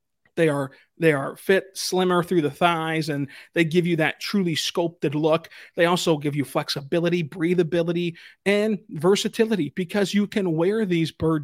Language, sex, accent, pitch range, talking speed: English, male, American, 155-180 Hz, 165 wpm